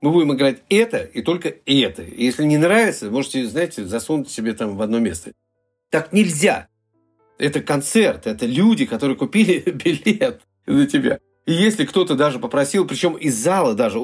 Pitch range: 115-190 Hz